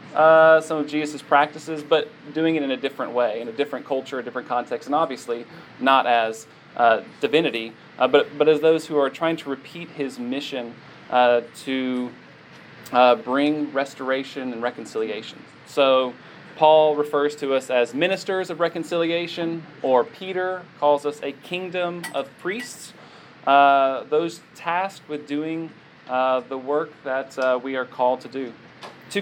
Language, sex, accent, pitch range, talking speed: English, male, American, 135-165 Hz, 160 wpm